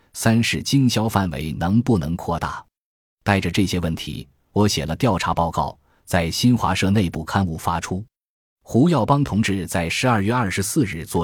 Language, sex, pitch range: Chinese, male, 85-115 Hz